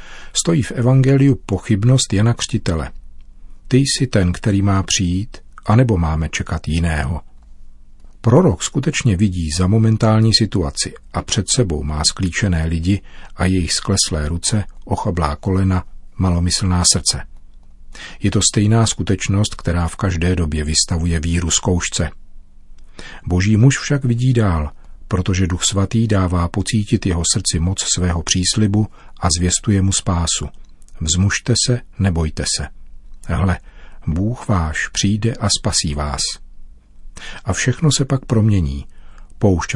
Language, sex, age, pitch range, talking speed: Czech, male, 40-59, 85-105 Hz, 125 wpm